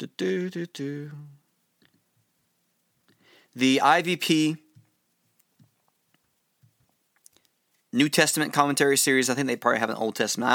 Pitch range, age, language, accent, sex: 125-155 Hz, 30-49, English, American, male